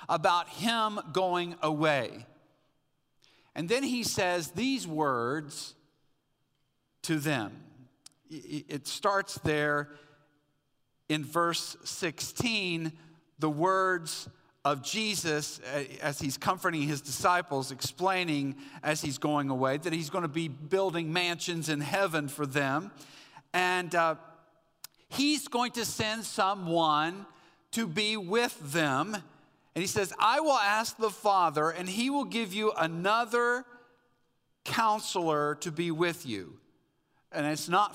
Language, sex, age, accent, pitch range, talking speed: English, male, 50-69, American, 145-190 Hz, 120 wpm